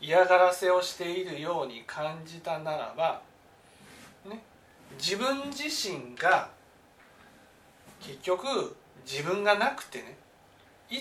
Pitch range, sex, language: 170-270 Hz, male, Japanese